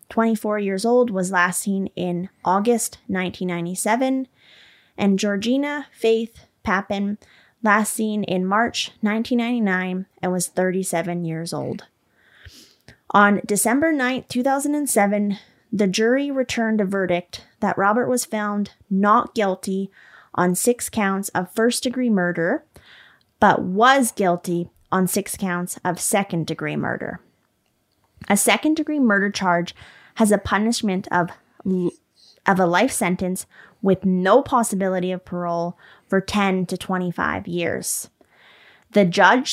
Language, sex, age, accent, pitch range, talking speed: English, female, 20-39, American, 180-225 Hz, 115 wpm